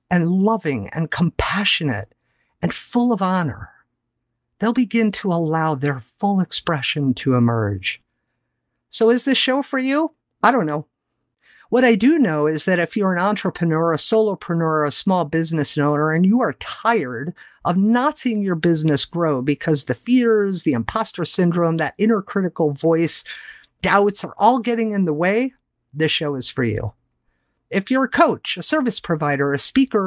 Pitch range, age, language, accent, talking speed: 155-255 Hz, 50-69, English, American, 165 wpm